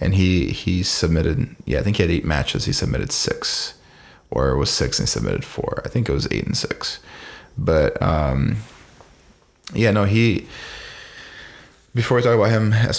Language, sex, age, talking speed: English, male, 20-39, 185 wpm